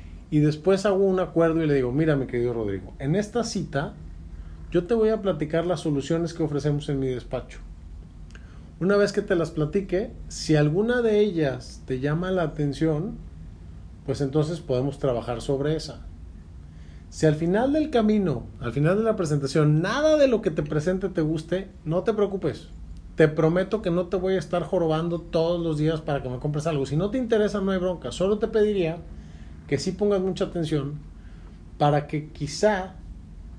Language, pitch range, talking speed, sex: Spanish, 110-180 Hz, 185 wpm, male